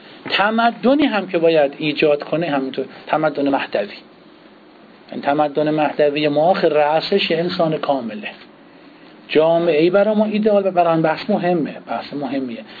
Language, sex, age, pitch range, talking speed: Persian, male, 50-69, 150-200 Hz, 130 wpm